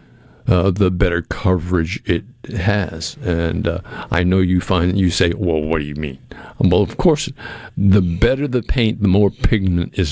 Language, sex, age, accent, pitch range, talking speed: English, male, 50-69, American, 90-110 Hz, 180 wpm